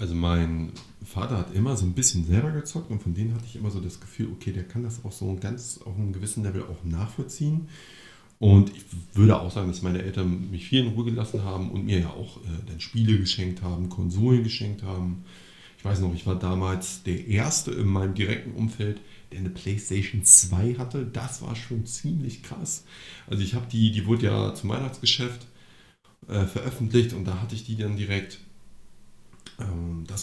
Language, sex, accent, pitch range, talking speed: German, male, German, 95-115 Hz, 195 wpm